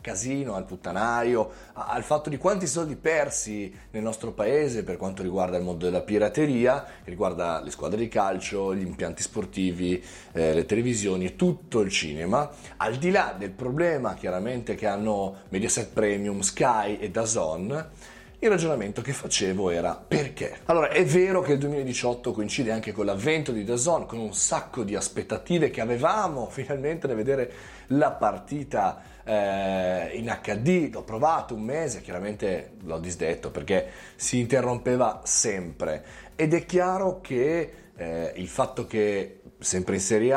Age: 30-49